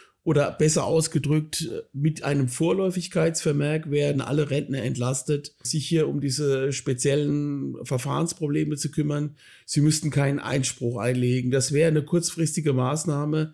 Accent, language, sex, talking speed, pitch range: German, German, male, 125 wpm, 140-165 Hz